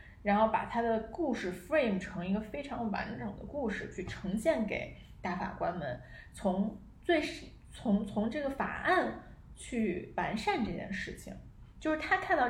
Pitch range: 190-255 Hz